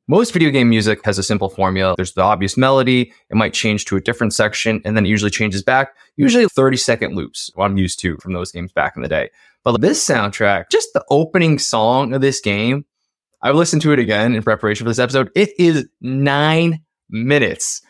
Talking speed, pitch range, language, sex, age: 210 wpm, 110-145 Hz, English, male, 20-39